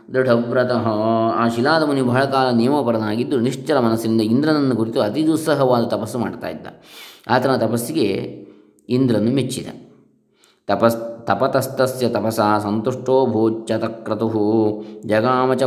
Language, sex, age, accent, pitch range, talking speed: Kannada, male, 20-39, native, 110-125 Hz, 95 wpm